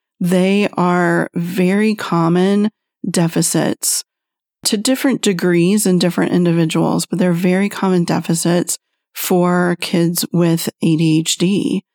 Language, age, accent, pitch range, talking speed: English, 40-59, American, 175-215 Hz, 100 wpm